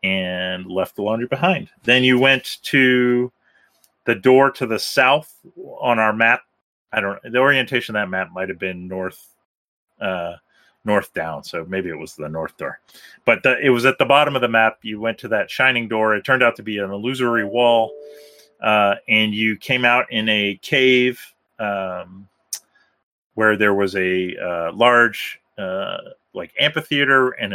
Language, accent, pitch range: English, American, 95-125 Hz